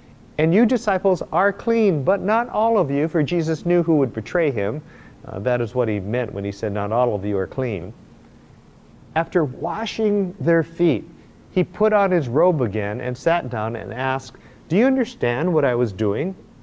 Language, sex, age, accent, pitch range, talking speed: English, male, 50-69, American, 120-170 Hz, 195 wpm